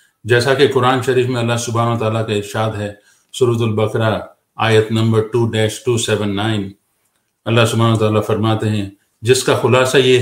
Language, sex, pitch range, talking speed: Urdu, male, 105-125 Hz, 145 wpm